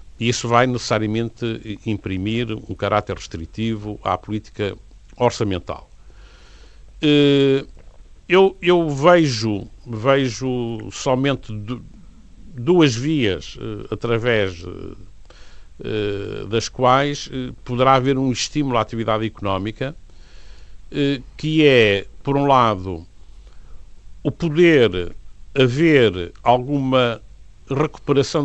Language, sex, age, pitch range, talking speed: Portuguese, male, 50-69, 100-130 Hz, 80 wpm